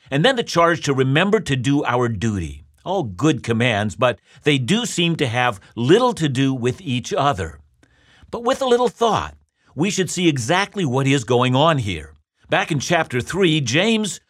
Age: 50-69